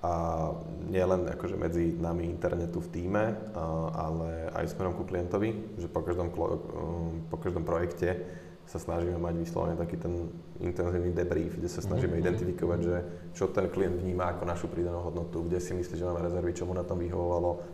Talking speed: 175 wpm